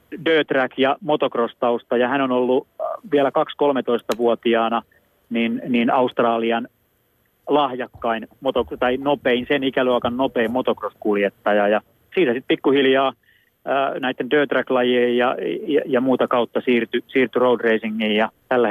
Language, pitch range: Finnish, 115-140 Hz